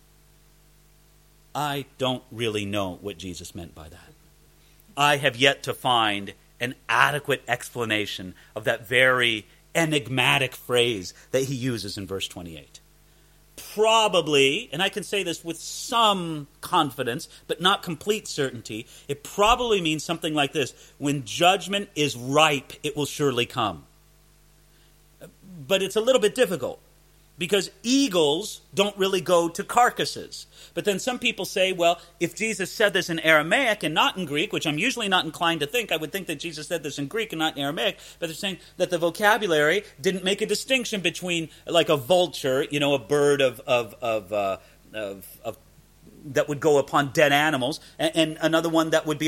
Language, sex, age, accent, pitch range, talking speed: English, male, 40-59, American, 135-190 Hz, 165 wpm